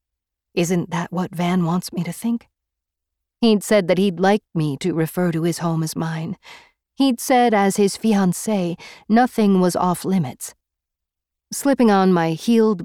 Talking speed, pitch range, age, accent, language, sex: 160 wpm, 150-200 Hz, 40-59, American, English, female